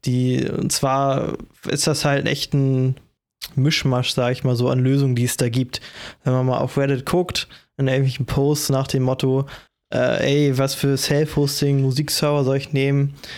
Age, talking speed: 20-39, 180 wpm